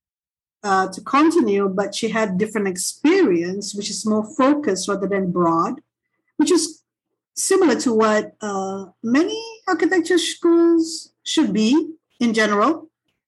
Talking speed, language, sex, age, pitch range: 125 wpm, English, female, 50-69, 195-260 Hz